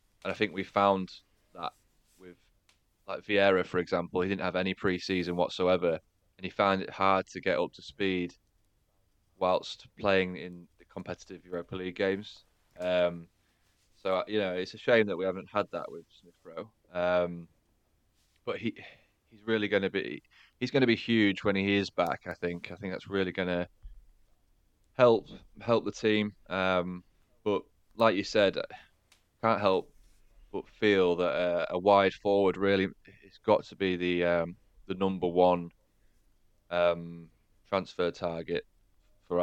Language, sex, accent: English, male, British